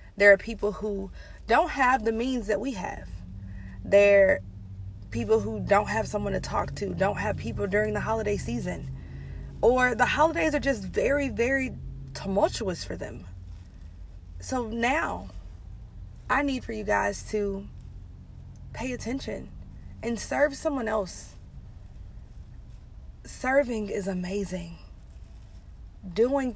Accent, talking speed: American, 125 wpm